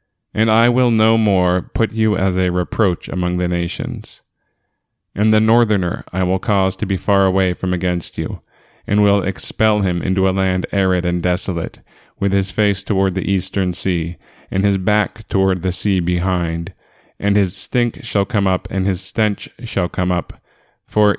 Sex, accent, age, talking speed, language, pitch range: male, American, 20-39, 180 wpm, English, 90-110 Hz